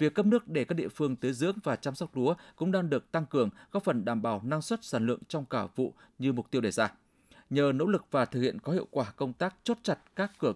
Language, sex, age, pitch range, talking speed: Vietnamese, male, 20-39, 130-180 Hz, 280 wpm